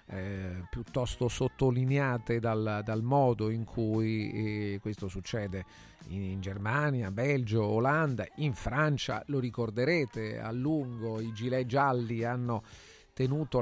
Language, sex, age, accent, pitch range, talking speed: Italian, male, 40-59, native, 110-130 Hz, 120 wpm